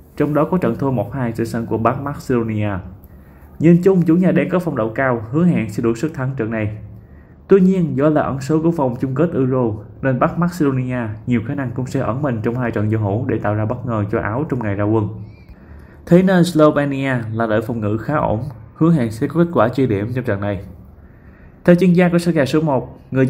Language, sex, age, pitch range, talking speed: Vietnamese, male, 20-39, 105-140 Hz, 240 wpm